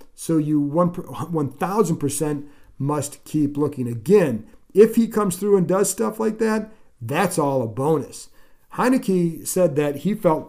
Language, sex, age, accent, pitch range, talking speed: English, male, 50-69, American, 135-180 Hz, 155 wpm